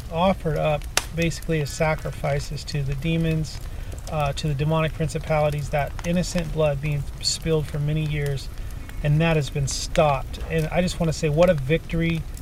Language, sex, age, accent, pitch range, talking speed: English, male, 30-49, American, 135-165 Hz, 170 wpm